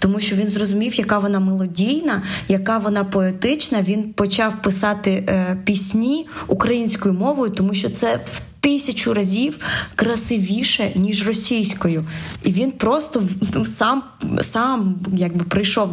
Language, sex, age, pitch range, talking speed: Ukrainian, female, 20-39, 190-230 Hz, 130 wpm